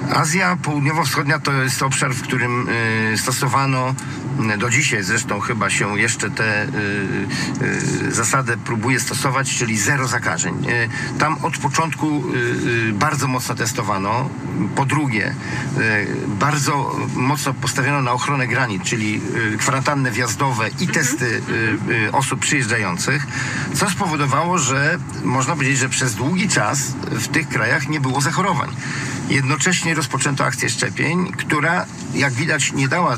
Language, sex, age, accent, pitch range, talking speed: Polish, male, 50-69, native, 125-145 Hz, 120 wpm